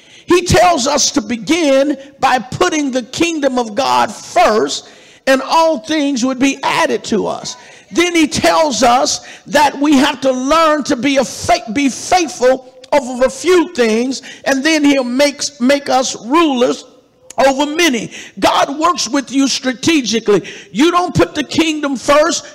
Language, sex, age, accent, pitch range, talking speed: English, male, 50-69, American, 245-295 Hz, 155 wpm